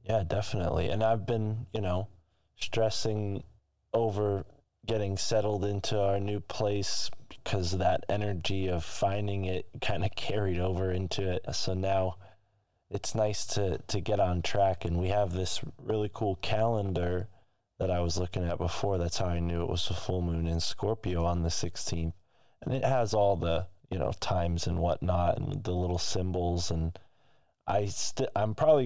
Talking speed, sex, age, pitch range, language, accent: 170 wpm, male, 20-39, 90-105 Hz, English, American